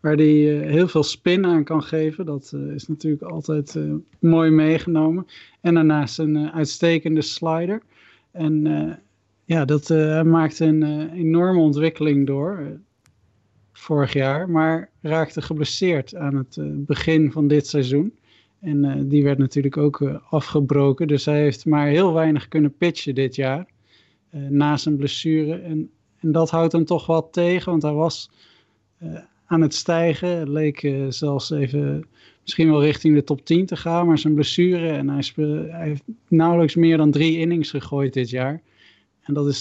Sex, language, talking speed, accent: male, Dutch, 175 wpm, Dutch